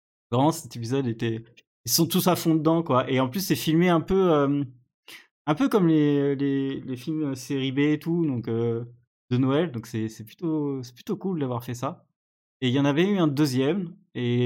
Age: 20-39